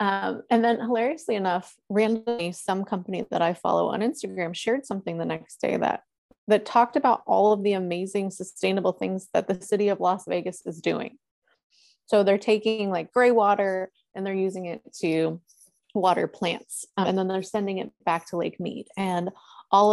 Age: 20-39